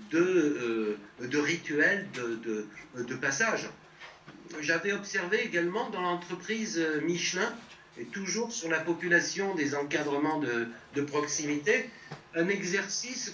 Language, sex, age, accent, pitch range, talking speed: French, male, 60-79, French, 150-205 Hz, 115 wpm